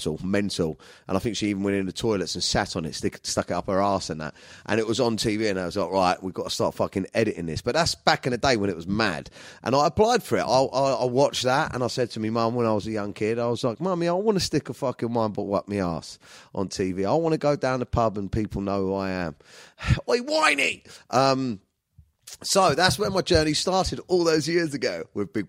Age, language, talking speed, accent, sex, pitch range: 30-49, English, 275 wpm, British, male, 95-125 Hz